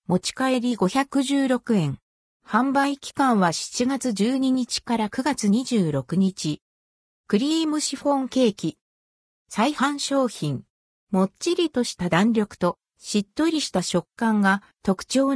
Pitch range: 180-265 Hz